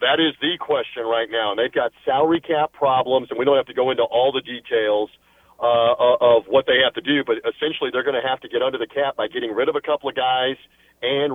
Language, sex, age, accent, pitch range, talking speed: English, male, 40-59, American, 135-175 Hz, 260 wpm